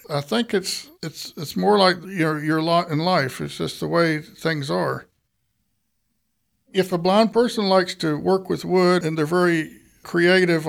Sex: male